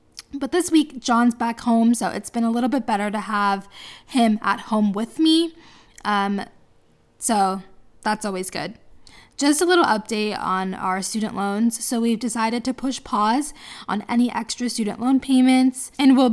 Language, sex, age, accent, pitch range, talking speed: English, female, 10-29, American, 200-245 Hz, 175 wpm